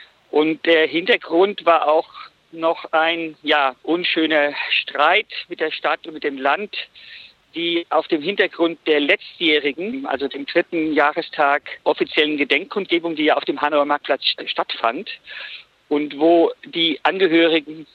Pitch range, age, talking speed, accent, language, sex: 145-205 Hz, 50-69, 135 wpm, German, German, male